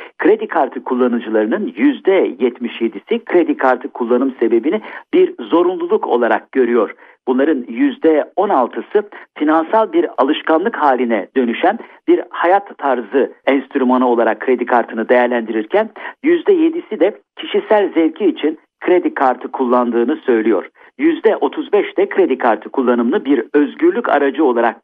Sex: male